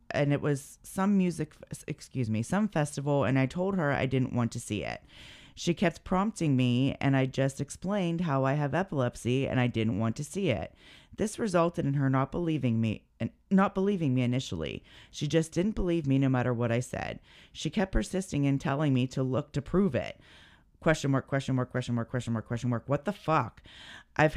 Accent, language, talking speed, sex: American, English, 210 wpm, female